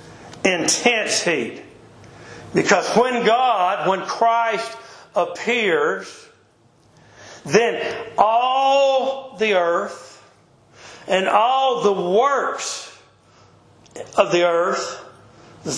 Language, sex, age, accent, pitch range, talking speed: English, male, 60-79, American, 190-225 Hz, 75 wpm